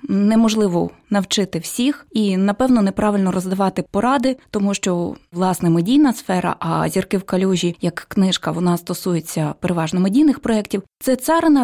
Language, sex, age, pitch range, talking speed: Ukrainian, female, 20-39, 195-270 Hz, 135 wpm